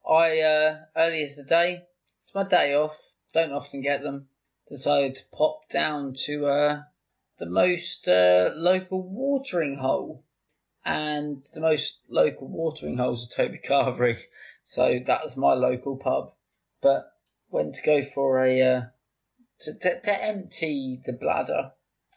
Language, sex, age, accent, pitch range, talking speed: English, male, 20-39, British, 130-170 Hz, 145 wpm